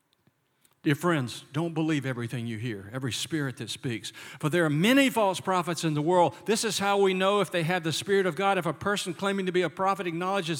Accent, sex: American, male